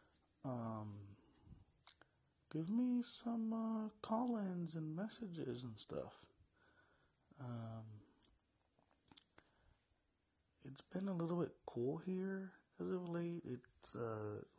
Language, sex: English, male